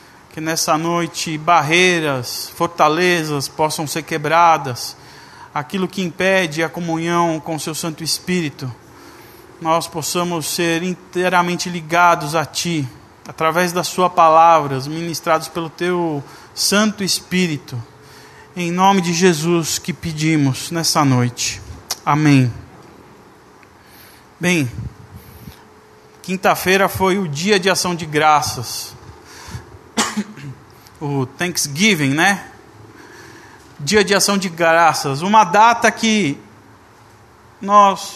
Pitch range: 145-185 Hz